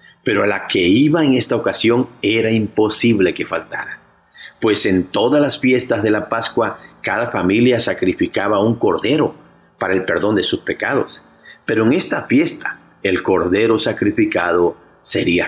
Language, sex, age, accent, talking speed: Spanish, male, 50-69, Mexican, 150 wpm